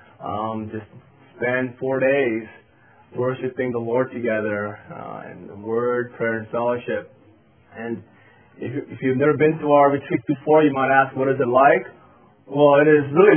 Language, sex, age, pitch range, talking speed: English, male, 20-39, 115-150 Hz, 170 wpm